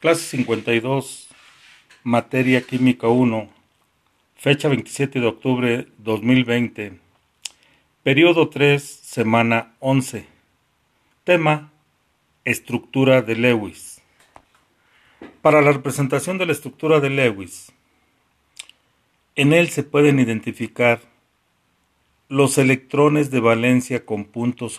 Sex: male